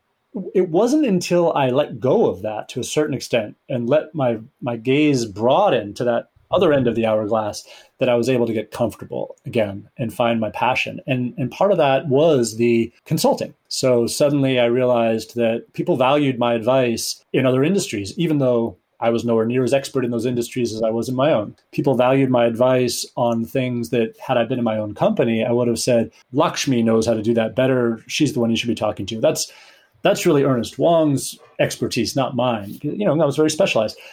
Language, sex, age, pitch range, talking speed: English, male, 30-49, 115-145 Hz, 215 wpm